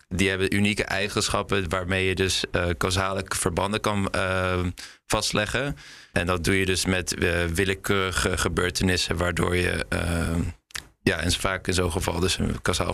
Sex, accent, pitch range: male, Dutch, 90-100 Hz